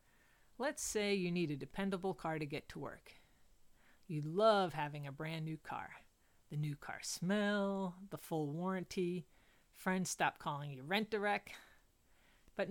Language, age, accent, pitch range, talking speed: English, 40-59, American, 150-200 Hz, 150 wpm